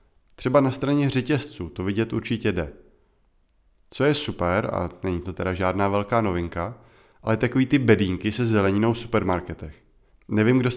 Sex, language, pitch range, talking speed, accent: male, Czech, 95-115 Hz, 160 wpm, native